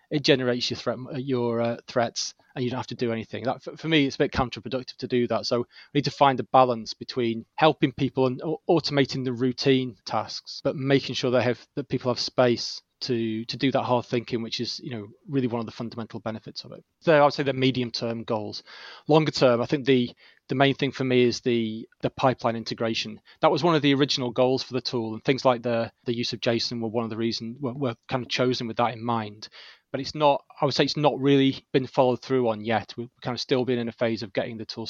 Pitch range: 115-135 Hz